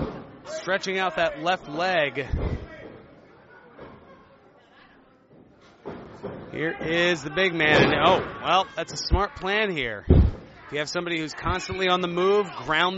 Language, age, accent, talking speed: English, 30-49, American, 125 wpm